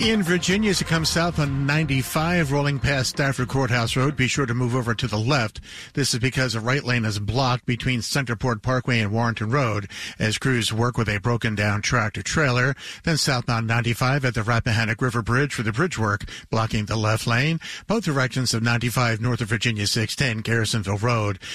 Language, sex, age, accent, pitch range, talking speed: English, male, 50-69, American, 110-130 Hz, 190 wpm